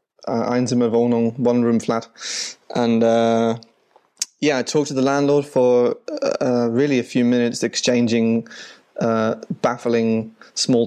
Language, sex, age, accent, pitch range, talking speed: English, male, 20-39, British, 115-125 Hz, 120 wpm